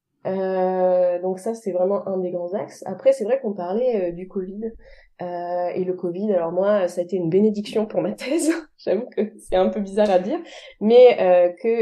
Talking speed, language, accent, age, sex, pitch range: 215 wpm, French, French, 20-39, female, 180-210 Hz